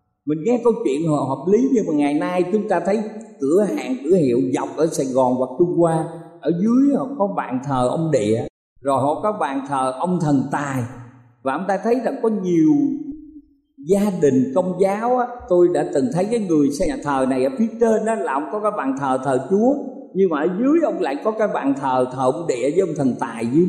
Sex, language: male, Vietnamese